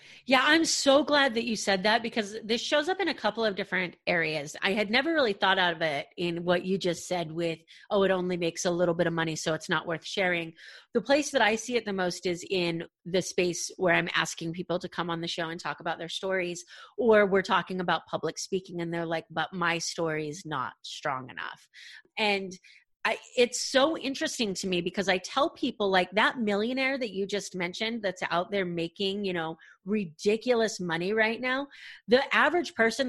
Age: 30-49